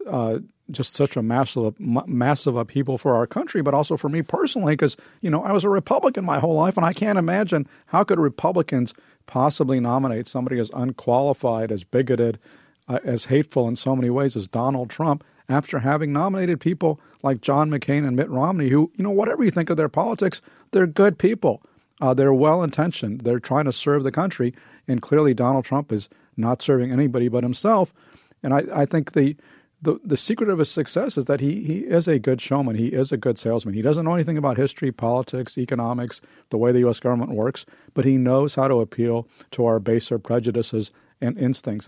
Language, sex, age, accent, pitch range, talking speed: English, male, 40-59, American, 120-150 Hz, 200 wpm